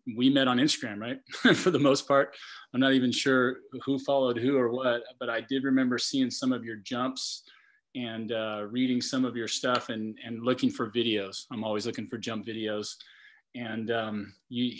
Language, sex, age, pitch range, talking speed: English, male, 30-49, 120-130 Hz, 190 wpm